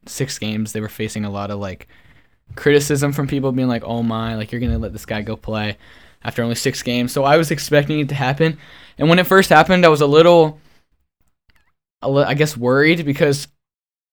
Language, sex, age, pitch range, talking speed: English, male, 10-29, 120-145 Hz, 205 wpm